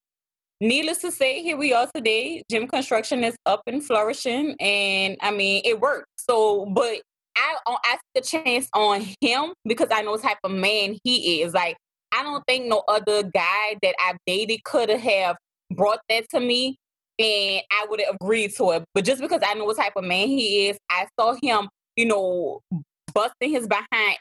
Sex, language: female, English